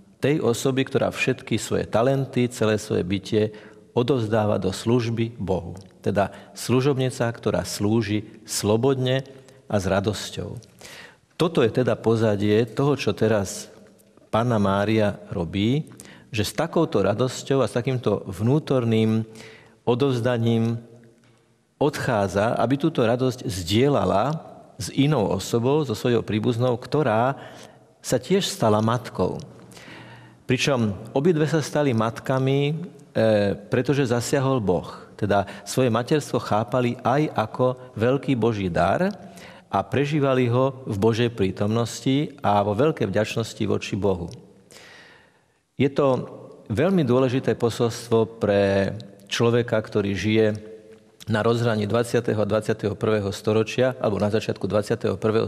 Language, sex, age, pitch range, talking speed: Slovak, male, 50-69, 105-130 Hz, 115 wpm